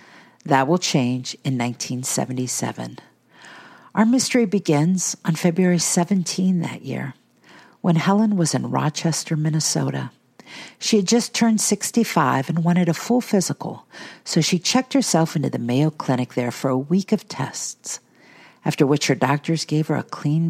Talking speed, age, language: 150 wpm, 50-69, English